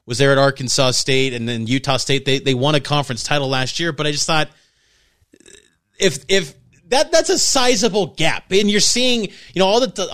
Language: English